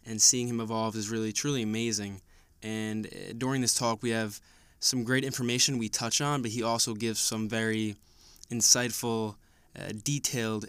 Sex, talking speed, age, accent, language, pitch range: male, 165 wpm, 20-39, American, English, 105-125 Hz